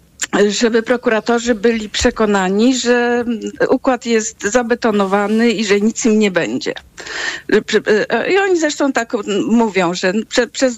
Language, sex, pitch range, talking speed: Polish, female, 185-245 Hz, 115 wpm